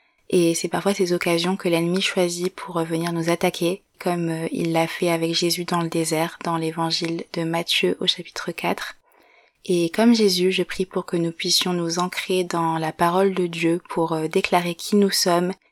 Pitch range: 170-185 Hz